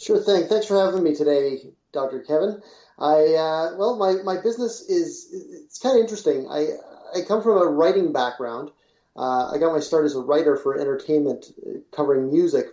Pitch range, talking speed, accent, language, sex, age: 130-170 Hz, 185 wpm, American, English, male, 30-49